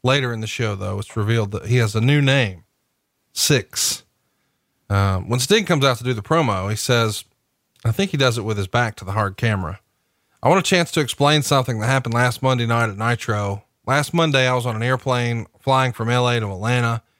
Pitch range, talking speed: 115-135 Hz, 220 wpm